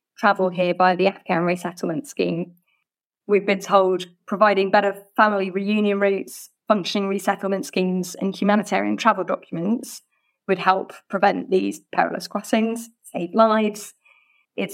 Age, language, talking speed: 20-39, English, 125 wpm